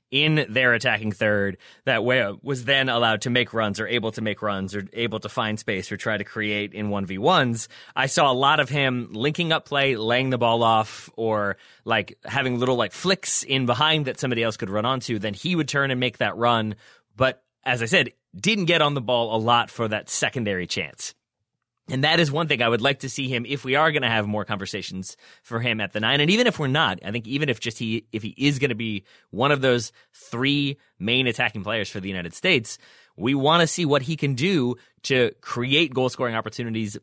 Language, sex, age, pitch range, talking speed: English, male, 30-49, 110-140 Hz, 230 wpm